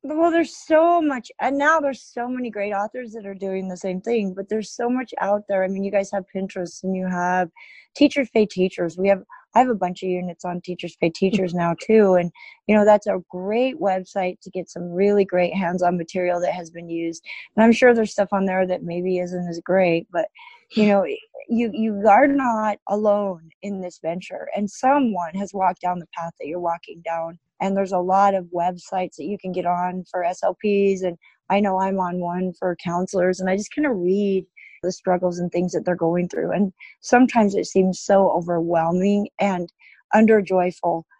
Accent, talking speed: American, 210 wpm